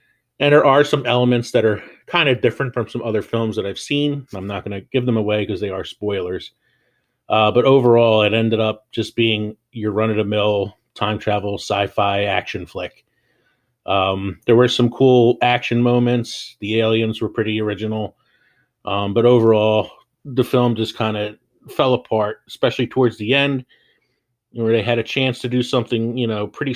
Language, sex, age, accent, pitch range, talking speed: English, male, 30-49, American, 105-120 Hz, 180 wpm